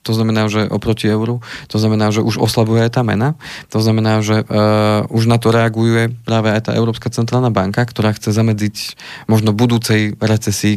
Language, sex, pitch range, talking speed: Slovak, male, 105-120 Hz, 185 wpm